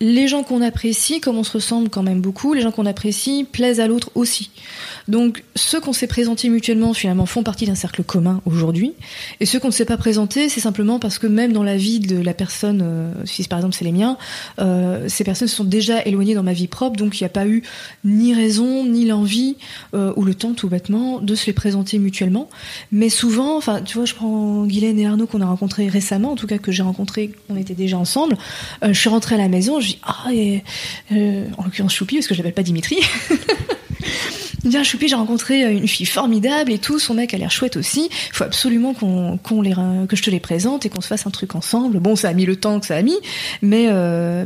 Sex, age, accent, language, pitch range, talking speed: female, 20-39, French, French, 195-235 Hz, 240 wpm